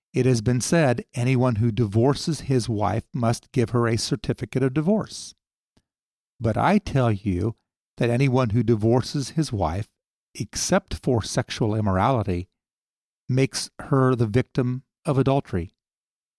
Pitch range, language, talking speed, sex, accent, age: 110-140 Hz, English, 130 wpm, male, American, 50-69